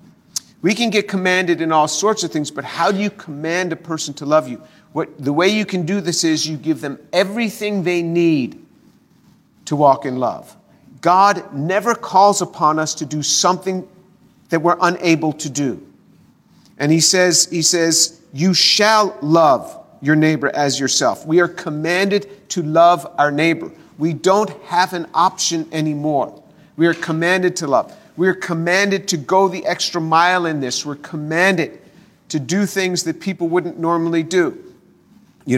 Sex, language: male, English